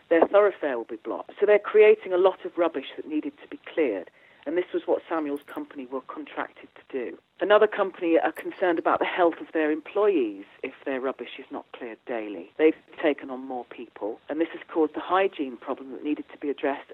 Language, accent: English, British